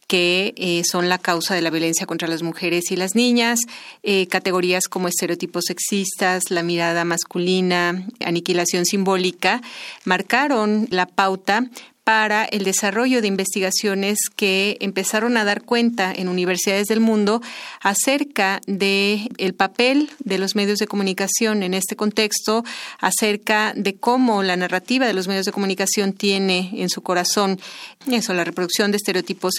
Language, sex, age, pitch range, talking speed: Spanish, female, 30-49, 185-225 Hz, 145 wpm